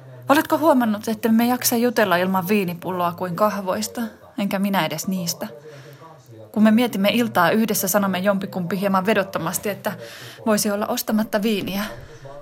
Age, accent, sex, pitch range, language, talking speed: 20-39, native, female, 180-230 Hz, Finnish, 135 wpm